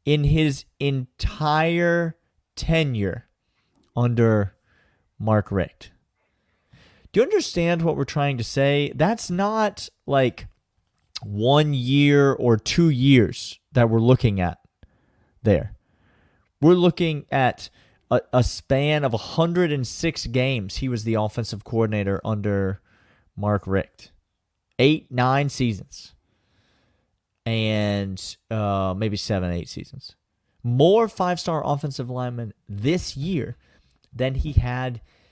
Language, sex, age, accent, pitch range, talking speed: English, male, 30-49, American, 105-150 Hz, 105 wpm